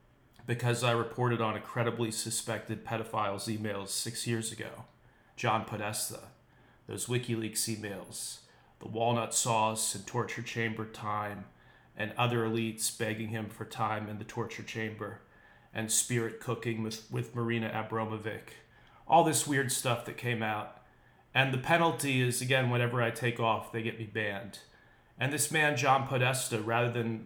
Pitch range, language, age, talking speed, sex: 110-125 Hz, English, 30-49, 150 wpm, male